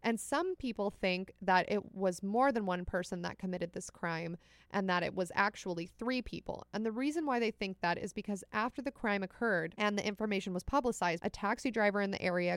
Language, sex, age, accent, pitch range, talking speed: English, female, 20-39, American, 185-225 Hz, 220 wpm